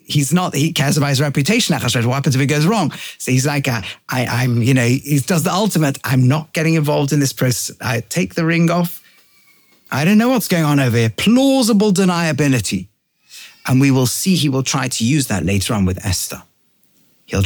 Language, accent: English, British